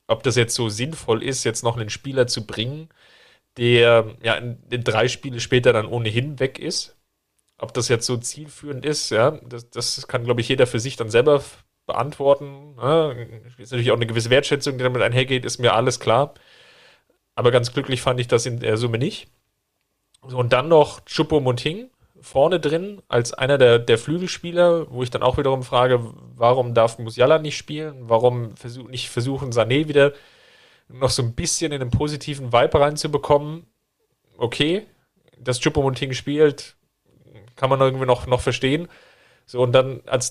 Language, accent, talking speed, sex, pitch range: German, German, 175 wpm, male, 120-145 Hz